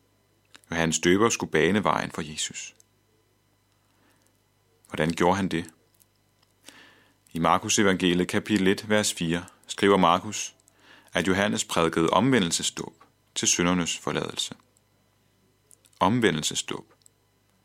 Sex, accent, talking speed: male, native, 95 wpm